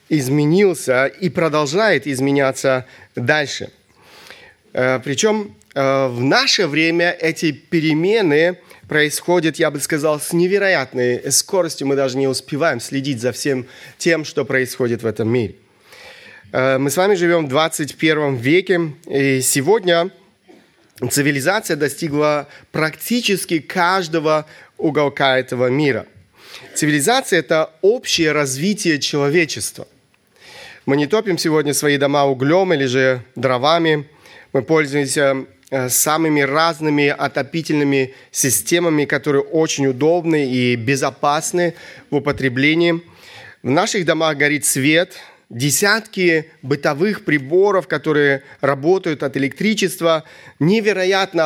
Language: Russian